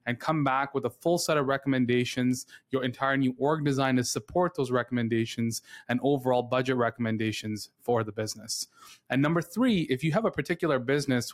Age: 20-39